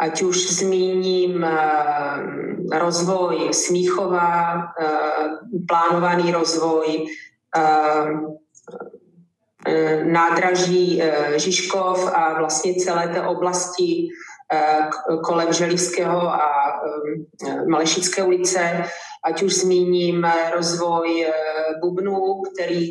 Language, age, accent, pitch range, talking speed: Czech, 30-49, native, 160-185 Hz, 65 wpm